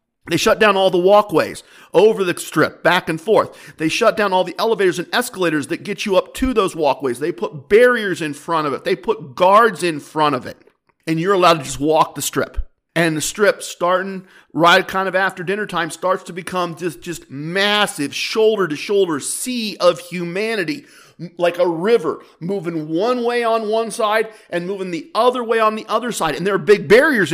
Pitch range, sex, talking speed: 165-220 Hz, male, 200 wpm